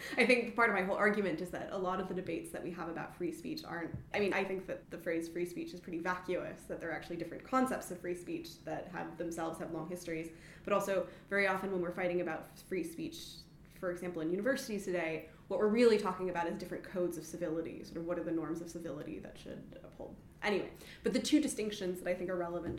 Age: 20-39